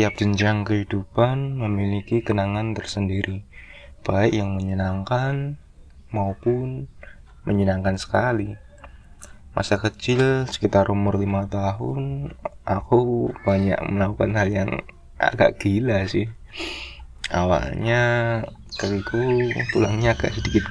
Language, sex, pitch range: Indonesian, male, 95-110 Hz